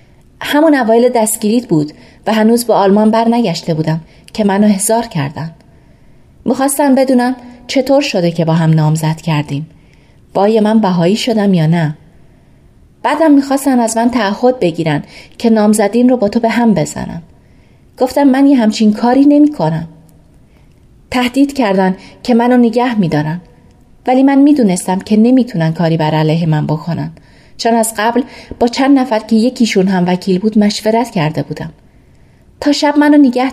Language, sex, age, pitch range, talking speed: Persian, female, 30-49, 170-245 Hz, 150 wpm